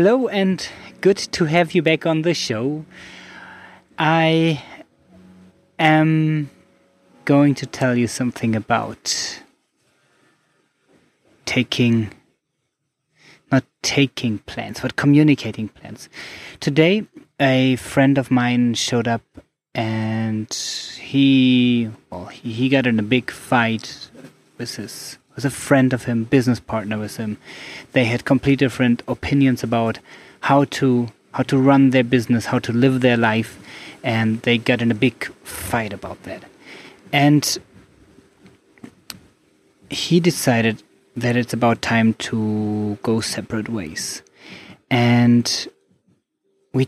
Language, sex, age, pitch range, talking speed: English, male, 20-39, 115-140 Hz, 120 wpm